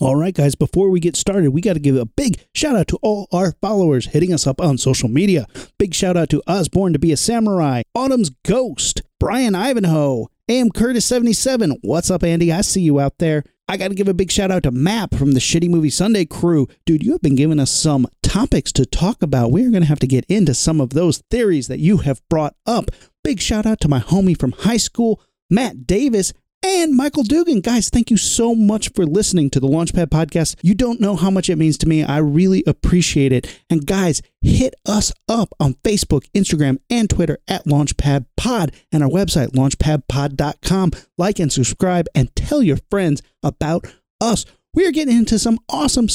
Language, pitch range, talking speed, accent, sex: English, 150-210 Hz, 210 wpm, American, male